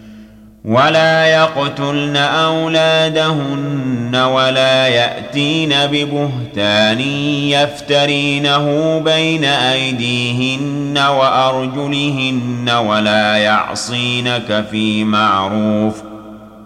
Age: 40-59